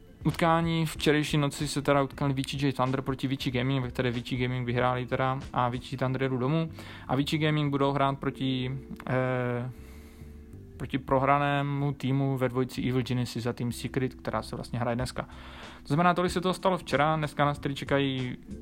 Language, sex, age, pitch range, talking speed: Czech, male, 20-39, 120-140 Hz, 180 wpm